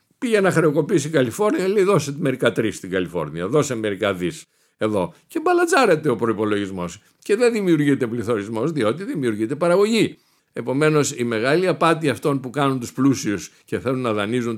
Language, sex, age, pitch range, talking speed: Greek, male, 50-69, 110-170 Hz, 160 wpm